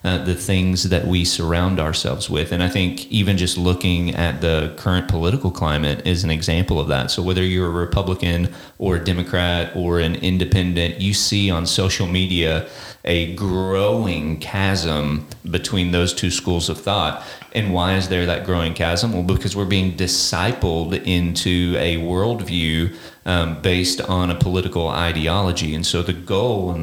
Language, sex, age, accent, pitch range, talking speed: English, male, 30-49, American, 85-95 Hz, 170 wpm